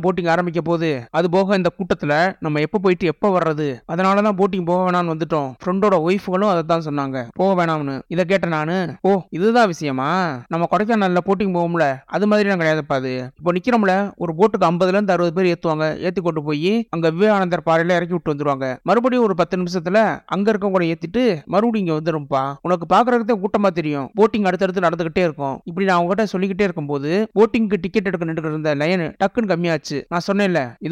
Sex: male